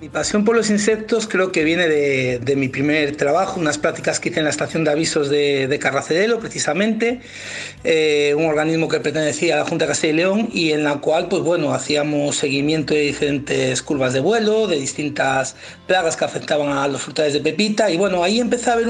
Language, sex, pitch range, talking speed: Spanish, male, 145-190 Hz, 215 wpm